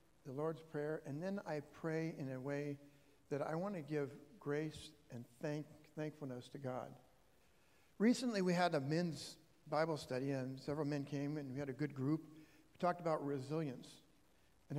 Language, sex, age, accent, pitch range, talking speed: English, male, 60-79, American, 140-170 Hz, 175 wpm